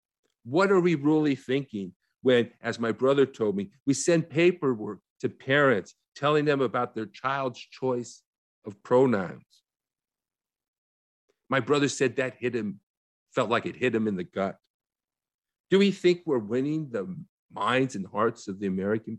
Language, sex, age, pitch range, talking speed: English, male, 50-69, 105-140 Hz, 155 wpm